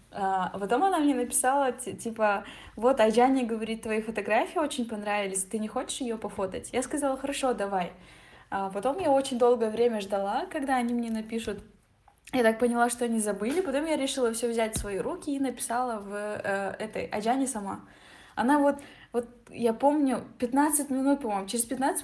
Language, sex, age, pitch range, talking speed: Russian, female, 10-29, 215-255 Hz, 175 wpm